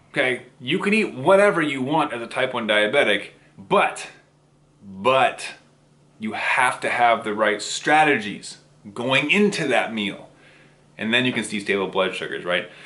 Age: 30-49